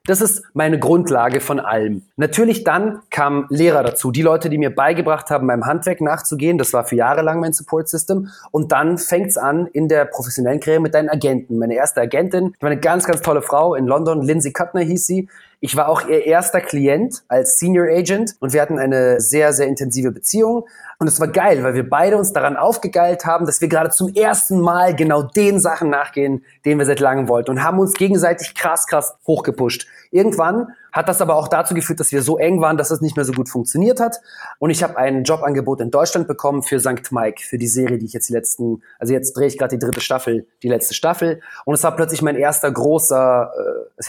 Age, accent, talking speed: 30-49, German, 220 wpm